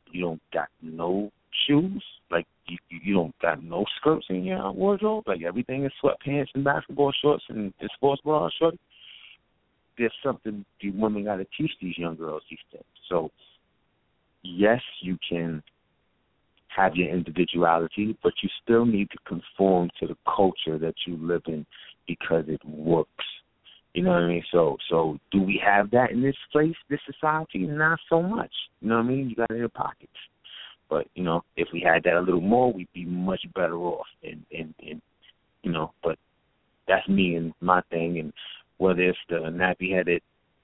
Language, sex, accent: English, male, American